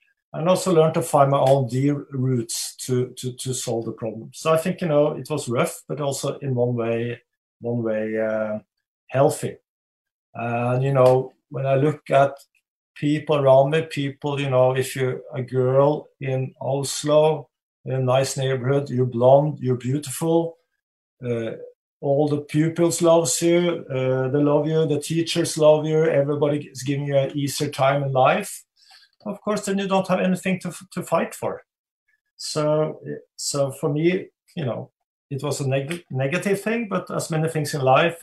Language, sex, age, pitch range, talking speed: Hindi, male, 50-69, 130-160 Hz, 175 wpm